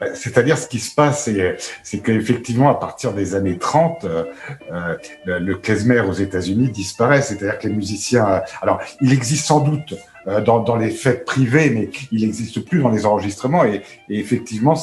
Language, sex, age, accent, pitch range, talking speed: French, male, 60-79, French, 105-135 Hz, 160 wpm